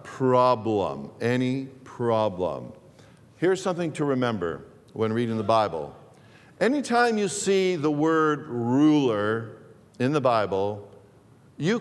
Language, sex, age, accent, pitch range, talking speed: English, male, 50-69, American, 120-145 Hz, 105 wpm